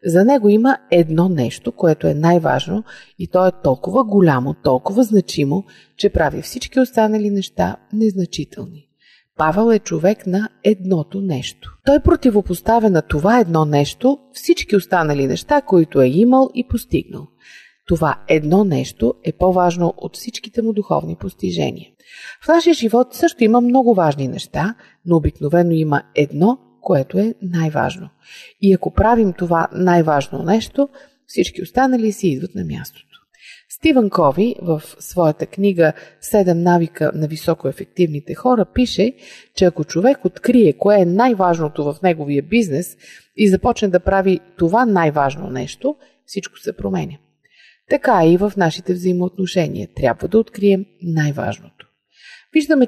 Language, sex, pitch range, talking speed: Bulgarian, female, 165-225 Hz, 135 wpm